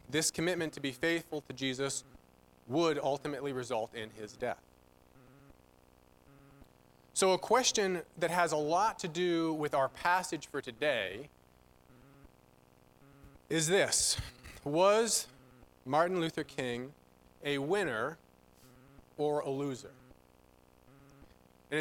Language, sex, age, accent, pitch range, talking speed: English, male, 30-49, American, 105-170 Hz, 105 wpm